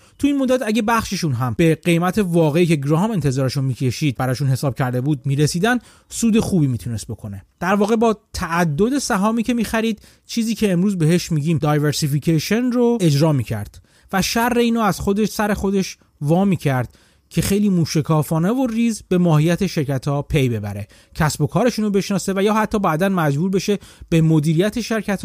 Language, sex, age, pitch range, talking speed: Persian, male, 30-49, 140-205 Hz, 170 wpm